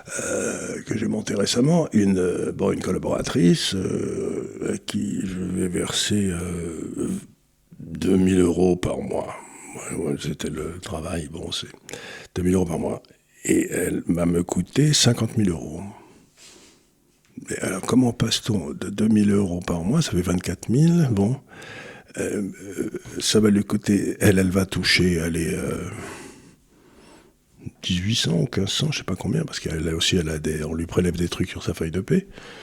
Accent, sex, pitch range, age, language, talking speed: French, male, 90-110 Hz, 60-79, French, 165 wpm